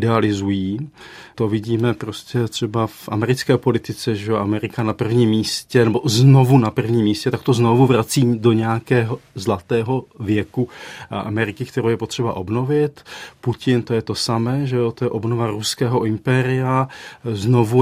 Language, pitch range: Czech, 110-130 Hz